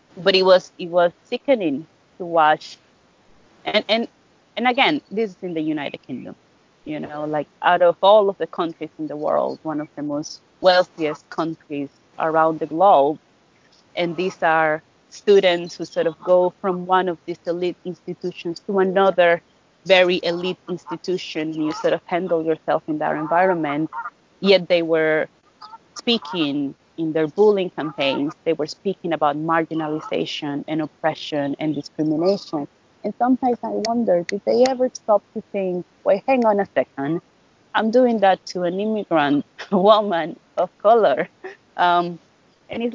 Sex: female